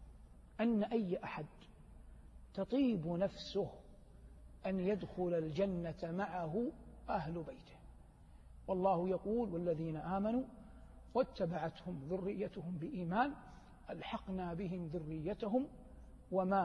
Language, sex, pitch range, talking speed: Arabic, male, 155-195 Hz, 80 wpm